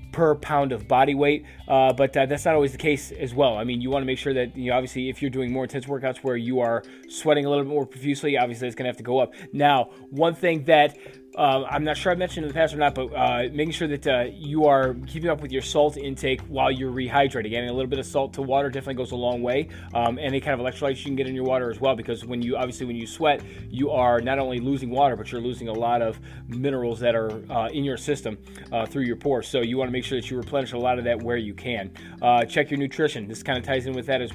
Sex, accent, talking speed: male, American, 290 wpm